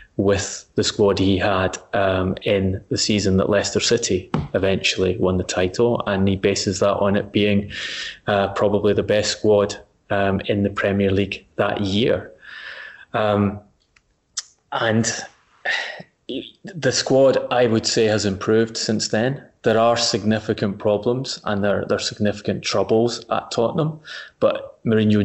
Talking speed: 145 wpm